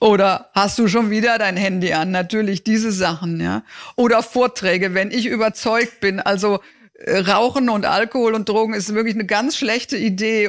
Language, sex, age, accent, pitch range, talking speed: German, female, 50-69, German, 200-235 Hz, 170 wpm